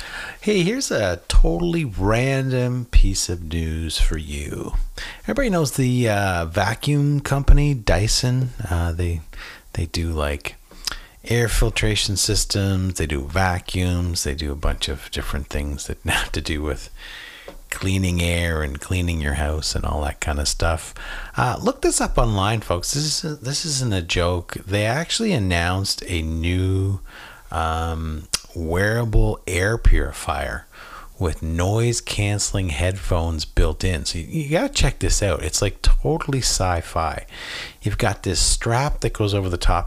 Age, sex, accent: 40-59, male, American